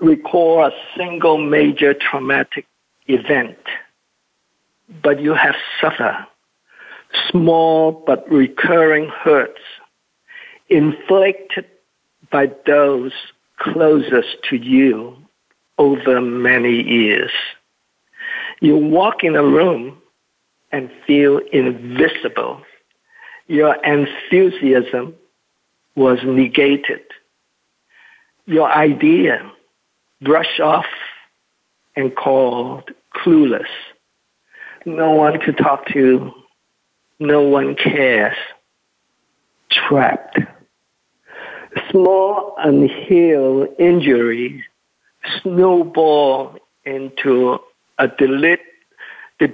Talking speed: 70 wpm